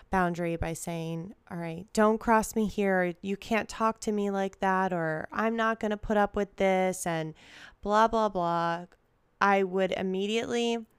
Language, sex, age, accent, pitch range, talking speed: English, female, 20-39, American, 170-205 Hz, 175 wpm